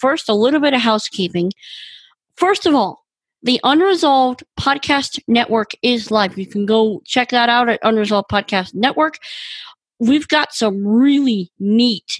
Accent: American